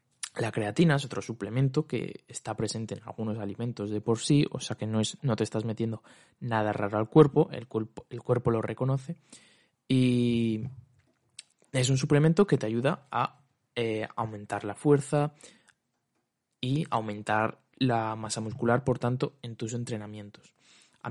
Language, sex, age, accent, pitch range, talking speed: Spanish, male, 20-39, Spanish, 110-135 Hz, 155 wpm